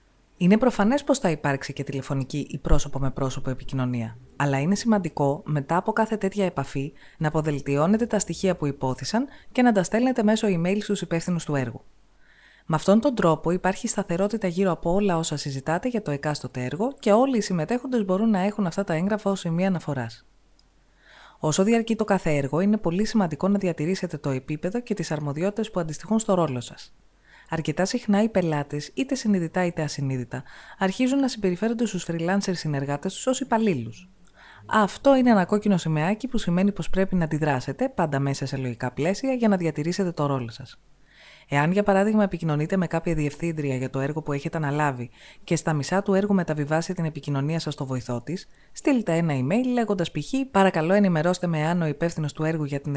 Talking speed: 185 wpm